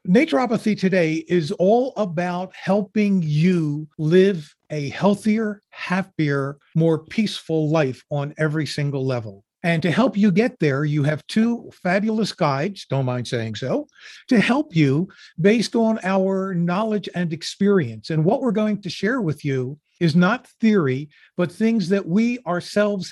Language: English